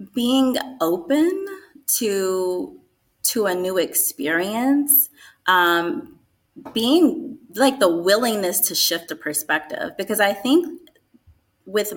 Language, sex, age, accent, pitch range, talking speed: English, female, 20-39, American, 175-275 Hz, 100 wpm